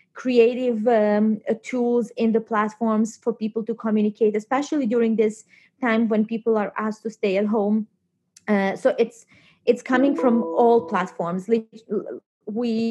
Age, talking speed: 20-39, 150 wpm